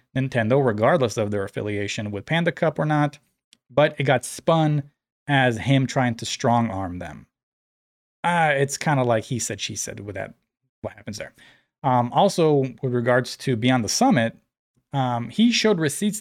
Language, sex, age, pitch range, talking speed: English, male, 30-49, 105-140 Hz, 175 wpm